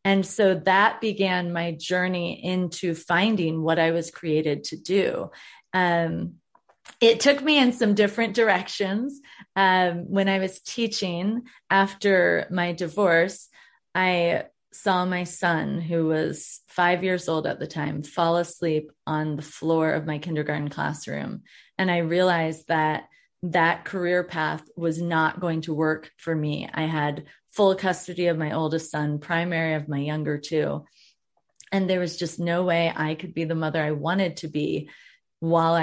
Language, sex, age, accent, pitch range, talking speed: English, female, 30-49, American, 160-195 Hz, 155 wpm